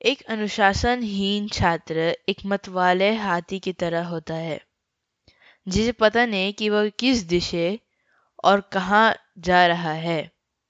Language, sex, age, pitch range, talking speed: Hindi, female, 20-39, 175-210 Hz, 125 wpm